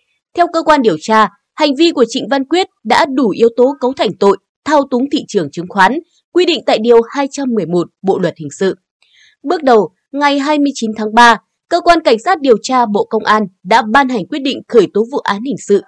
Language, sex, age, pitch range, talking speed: Vietnamese, female, 20-39, 215-295 Hz, 225 wpm